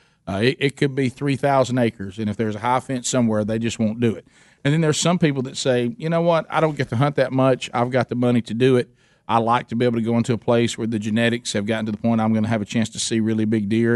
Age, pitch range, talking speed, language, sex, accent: 40-59, 115-145 Hz, 310 wpm, English, male, American